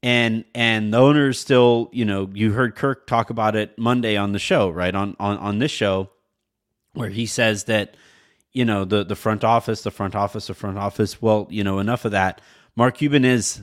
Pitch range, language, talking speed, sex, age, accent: 105-125 Hz, English, 210 wpm, male, 30-49, American